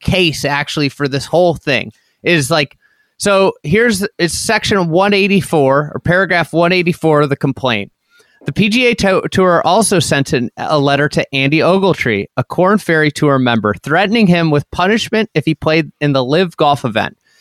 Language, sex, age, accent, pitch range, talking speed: English, male, 30-49, American, 145-190 Hz, 160 wpm